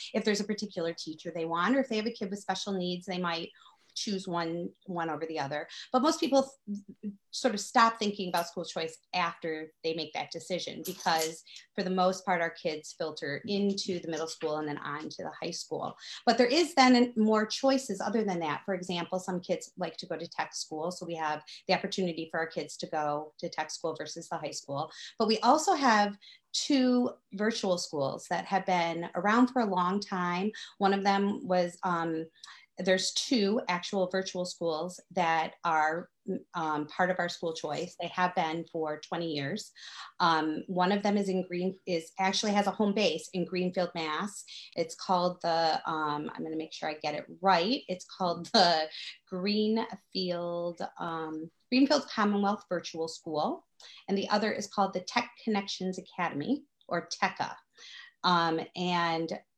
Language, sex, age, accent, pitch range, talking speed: English, female, 30-49, American, 165-205 Hz, 185 wpm